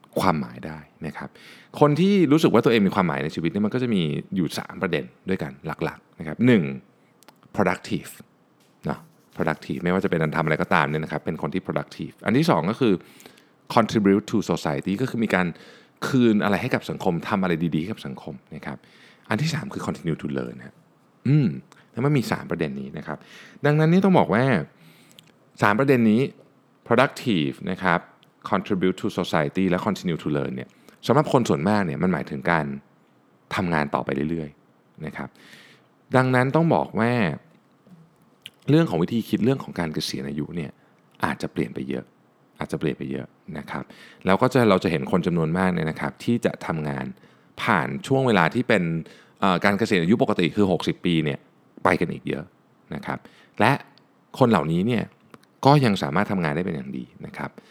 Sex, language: male, Thai